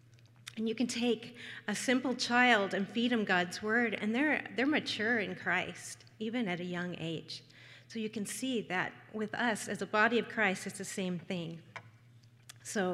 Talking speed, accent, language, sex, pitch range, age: 185 wpm, American, English, female, 170-215 Hz, 40-59